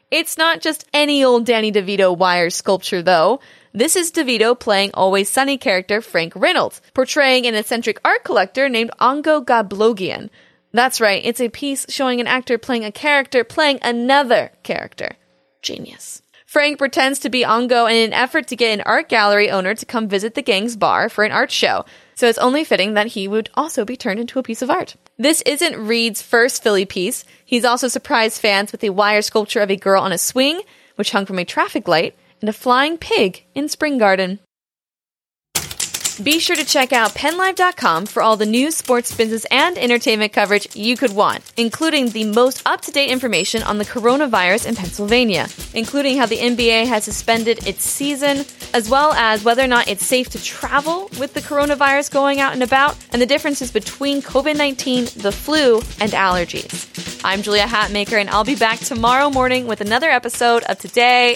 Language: English